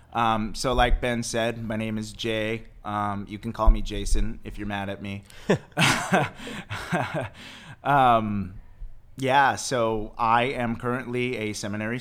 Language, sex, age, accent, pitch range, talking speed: English, male, 30-49, American, 105-120 Hz, 140 wpm